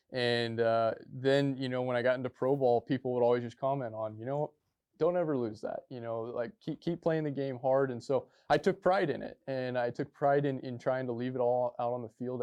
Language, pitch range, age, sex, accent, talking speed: English, 115-135 Hz, 20-39, male, American, 260 wpm